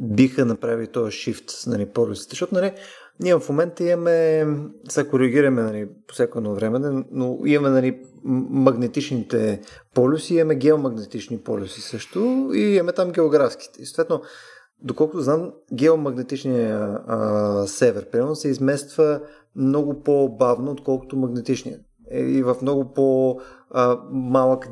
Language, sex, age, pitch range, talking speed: Bulgarian, male, 30-49, 120-145 Hz, 120 wpm